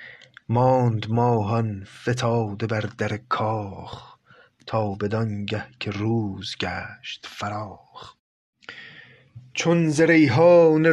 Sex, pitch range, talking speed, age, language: male, 115-145 Hz, 75 wpm, 30-49, Persian